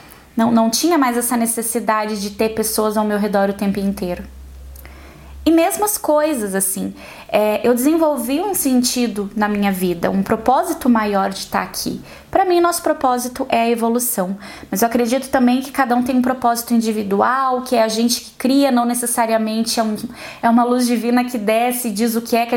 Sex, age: female, 20-39